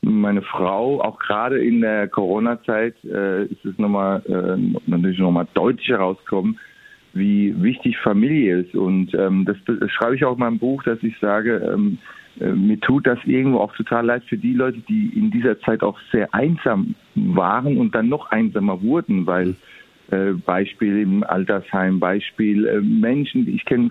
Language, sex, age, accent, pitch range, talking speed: German, male, 50-69, German, 105-175 Hz, 175 wpm